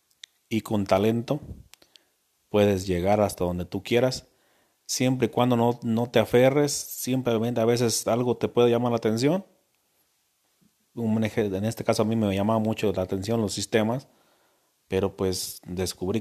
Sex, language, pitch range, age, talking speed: male, Spanish, 95-120 Hz, 40-59, 150 wpm